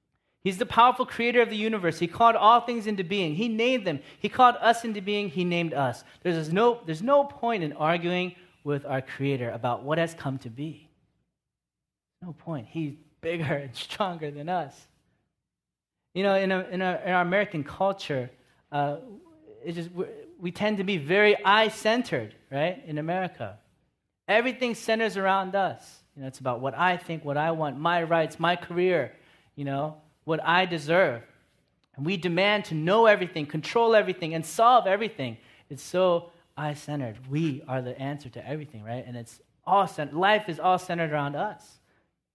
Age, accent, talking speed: 30-49, American, 175 wpm